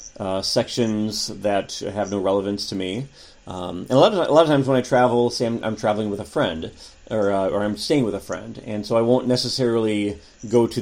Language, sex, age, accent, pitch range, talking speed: English, male, 30-49, American, 100-120 Hz, 220 wpm